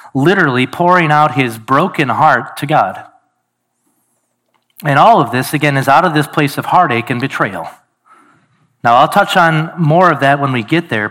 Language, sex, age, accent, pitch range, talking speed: English, male, 40-59, American, 135-180 Hz, 180 wpm